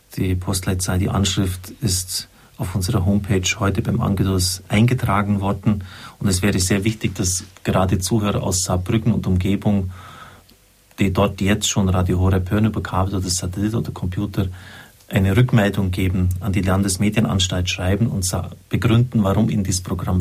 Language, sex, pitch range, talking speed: German, male, 95-110 Hz, 150 wpm